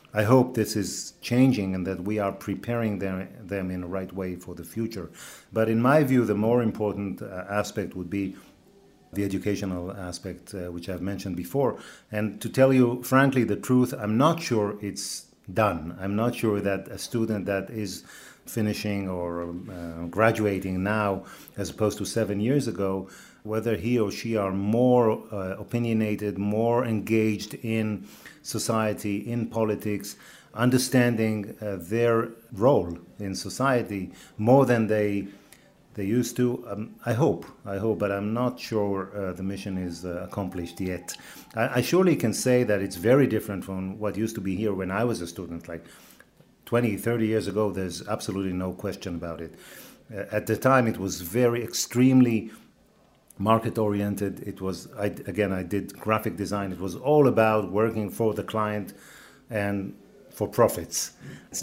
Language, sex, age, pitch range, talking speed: English, male, 40-59, 95-115 Hz, 165 wpm